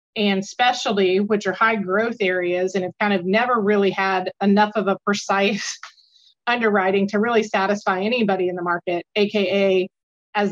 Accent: American